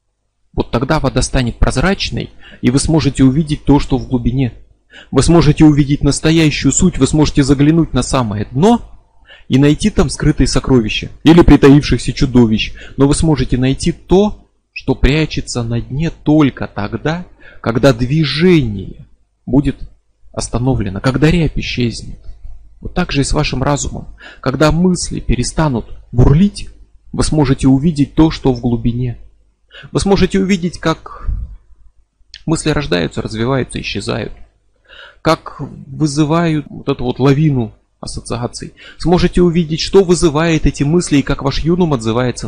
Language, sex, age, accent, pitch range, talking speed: Russian, male, 30-49, native, 120-155 Hz, 135 wpm